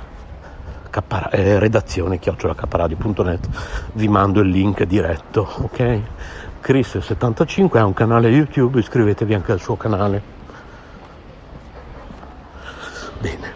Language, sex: Italian, male